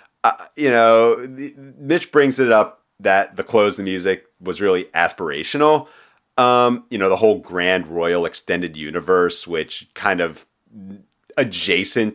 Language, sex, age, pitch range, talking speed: English, male, 40-59, 85-110 Hz, 145 wpm